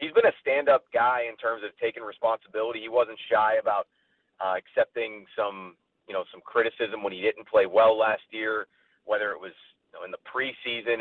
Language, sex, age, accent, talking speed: English, male, 30-49, American, 195 wpm